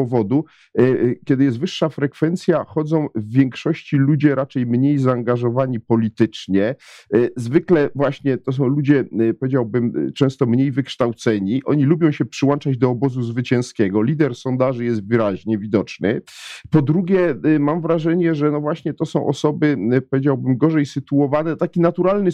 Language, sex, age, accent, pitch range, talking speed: Polish, male, 40-59, native, 120-155 Hz, 130 wpm